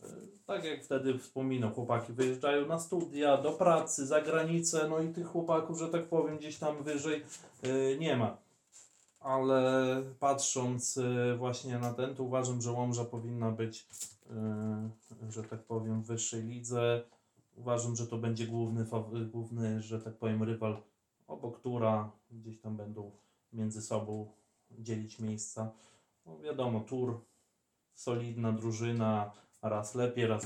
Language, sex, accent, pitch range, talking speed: Polish, male, native, 110-125 Hz, 135 wpm